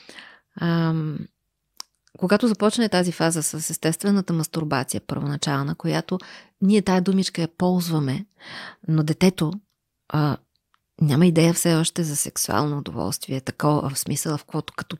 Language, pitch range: Bulgarian, 155-190 Hz